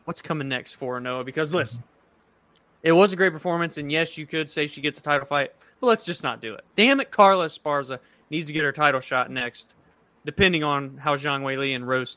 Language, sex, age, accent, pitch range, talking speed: English, male, 20-39, American, 135-180 Hz, 225 wpm